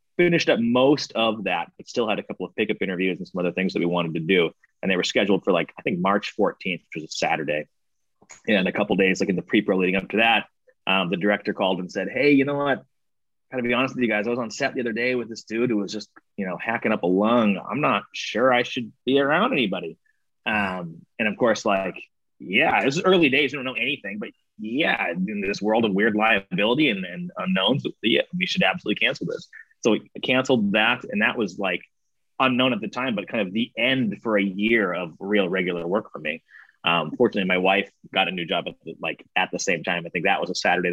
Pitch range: 90-130 Hz